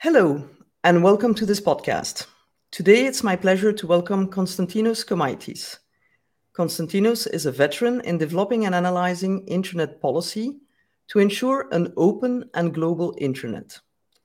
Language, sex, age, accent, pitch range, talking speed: English, female, 50-69, French, 155-225 Hz, 130 wpm